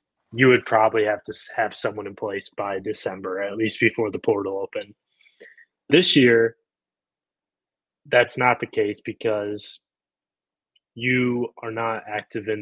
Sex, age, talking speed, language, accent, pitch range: male, 20-39, 140 wpm, English, American, 105-120 Hz